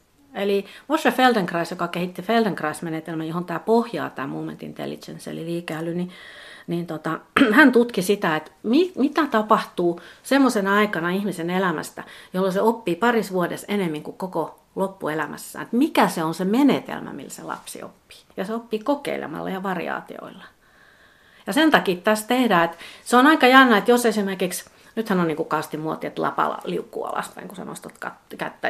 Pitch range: 165-220 Hz